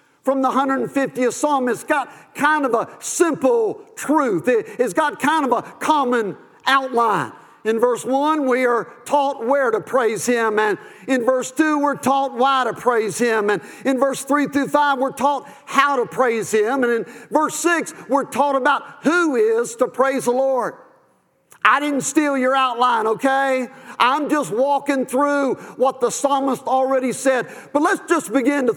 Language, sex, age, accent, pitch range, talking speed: English, male, 50-69, American, 245-285 Hz, 175 wpm